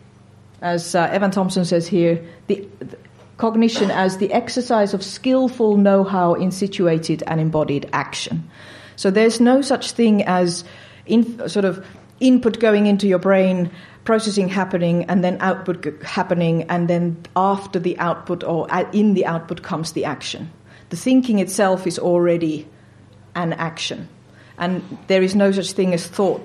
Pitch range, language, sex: 160-195 Hz, Swedish, female